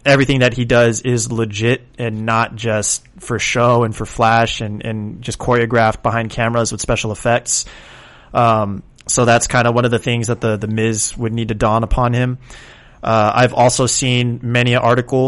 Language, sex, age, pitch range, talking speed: English, male, 30-49, 115-125 Hz, 190 wpm